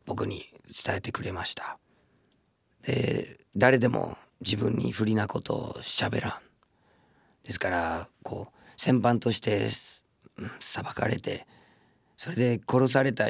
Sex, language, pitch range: male, Japanese, 110-125 Hz